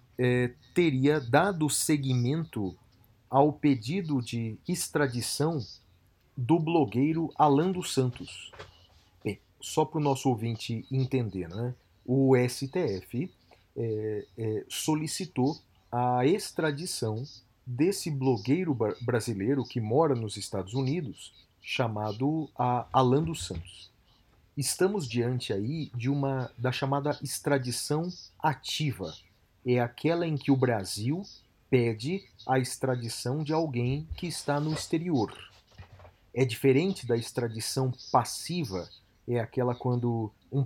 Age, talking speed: 40-59, 110 wpm